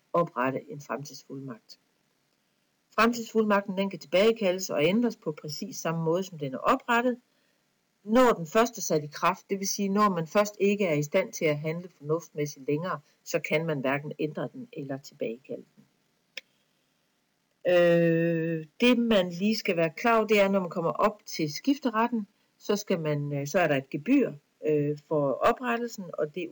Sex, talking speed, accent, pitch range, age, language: female, 170 wpm, native, 150-210 Hz, 60-79, Danish